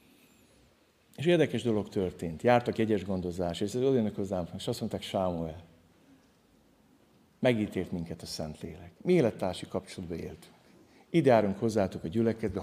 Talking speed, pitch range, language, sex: 130 wpm, 90-120 Hz, Hungarian, male